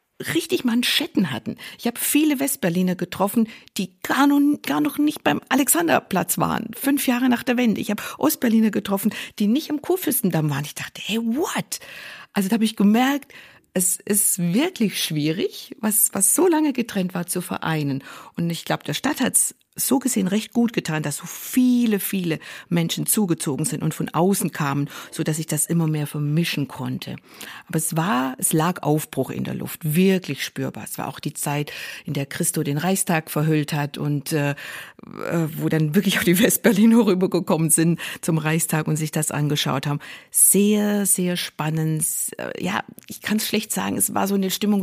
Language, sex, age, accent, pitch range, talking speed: German, female, 50-69, German, 155-230 Hz, 185 wpm